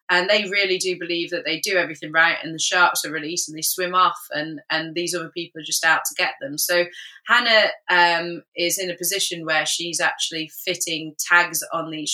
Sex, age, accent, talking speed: female, 20-39, British, 215 wpm